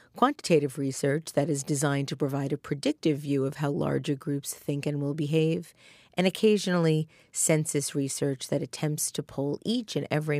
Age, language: 40-59, English